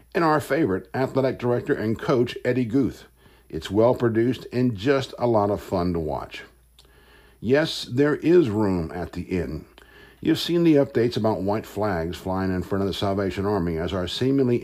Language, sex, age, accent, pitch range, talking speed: English, male, 60-79, American, 95-130 Hz, 175 wpm